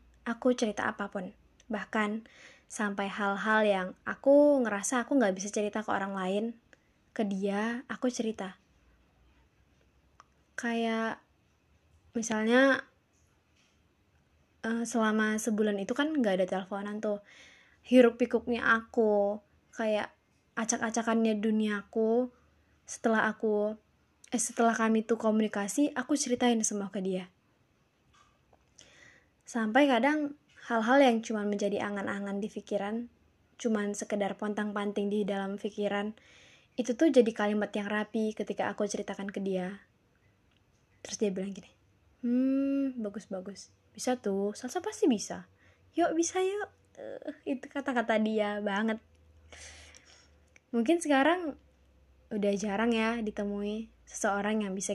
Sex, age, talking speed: female, 20-39, 110 wpm